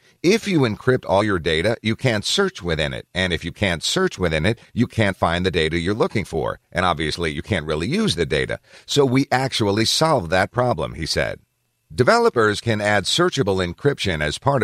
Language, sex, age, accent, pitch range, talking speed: English, male, 50-69, American, 85-115 Hz, 200 wpm